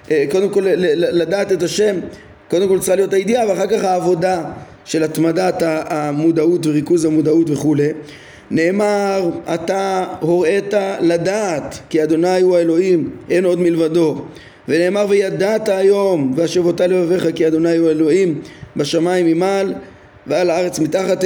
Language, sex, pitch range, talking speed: Hebrew, male, 155-185 Hz, 125 wpm